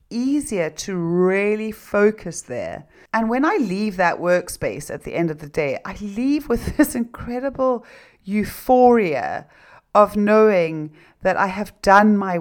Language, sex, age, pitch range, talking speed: English, female, 40-59, 155-195 Hz, 145 wpm